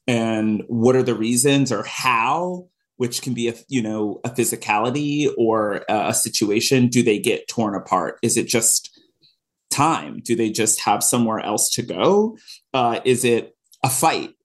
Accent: American